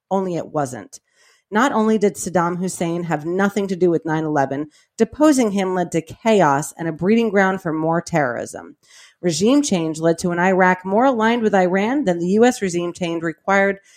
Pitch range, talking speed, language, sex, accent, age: 165-210 Hz, 180 wpm, English, female, American, 30-49